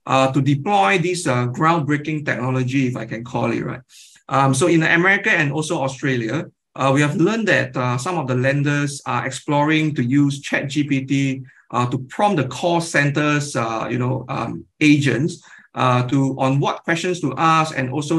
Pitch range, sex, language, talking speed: 130-155 Hz, male, English, 185 wpm